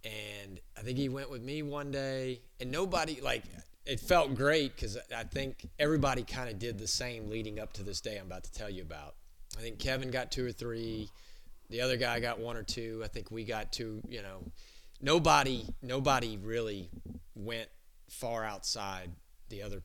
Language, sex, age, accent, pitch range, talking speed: English, male, 30-49, American, 85-125 Hz, 195 wpm